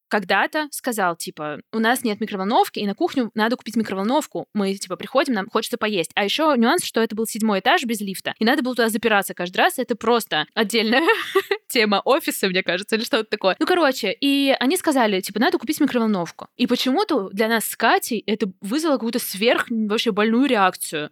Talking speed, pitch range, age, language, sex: 195 wpm, 200-250 Hz, 20-39, Russian, female